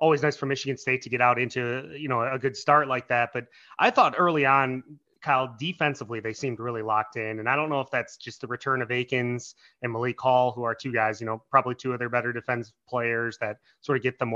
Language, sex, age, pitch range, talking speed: English, male, 30-49, 125-145 Hz, 250 wpm